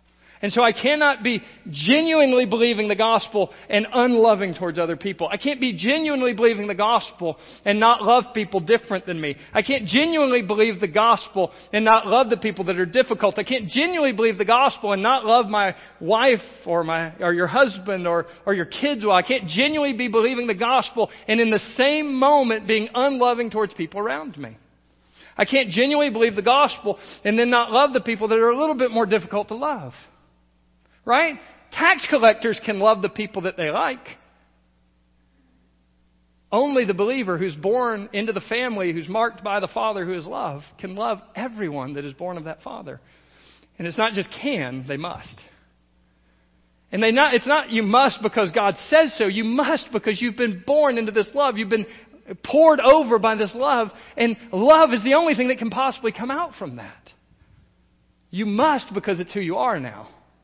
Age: 40-59